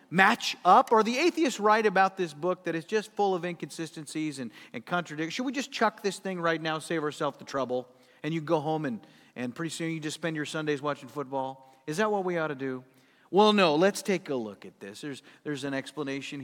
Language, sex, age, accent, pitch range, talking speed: English, male, 40-59, American, 150-220 Hz, 235 wpm